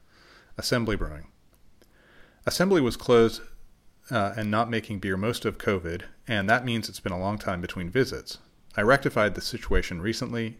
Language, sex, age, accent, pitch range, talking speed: English, male, 30-49, American, 95-120 Hz, 160 wpm